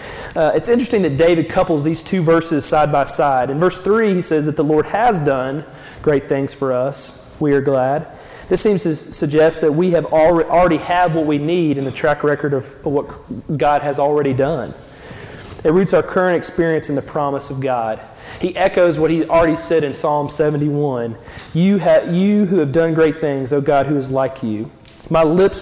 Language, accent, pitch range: English, American, 135-165 Hz